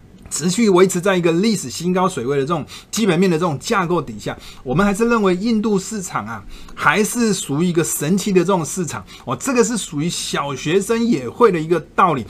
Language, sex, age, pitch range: Chinese, male, 20-39, 150-205 Hz